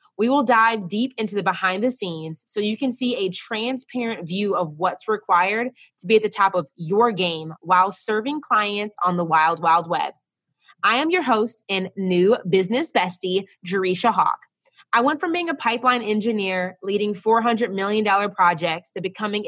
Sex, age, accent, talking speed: female, 20-39, American, 180 wpm